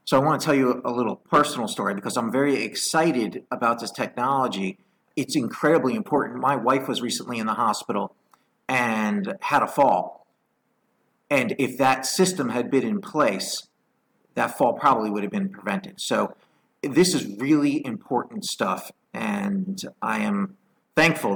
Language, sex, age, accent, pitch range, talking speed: English, male, 40-59, American, 130-195 Hz, 155 wpm